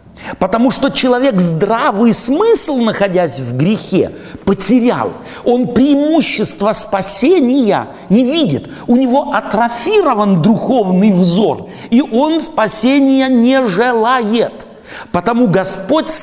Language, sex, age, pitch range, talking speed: Russian, male, 50-69, 150-245 Hz, 95 wpm